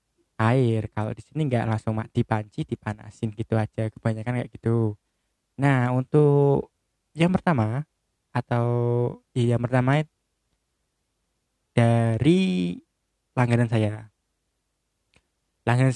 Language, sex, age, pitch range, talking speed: Indonesian, male, 20-39, 110-140 Hz, 95 wpm